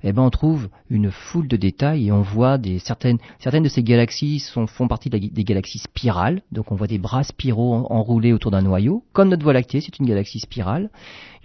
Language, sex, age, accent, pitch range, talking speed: French, male, 40-59, French, 110-150 Hz, 220 wpm